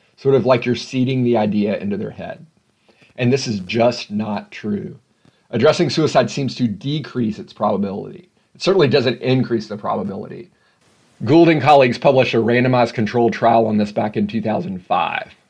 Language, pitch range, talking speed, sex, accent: English, 115-135 Hz, 165 wpm, male, American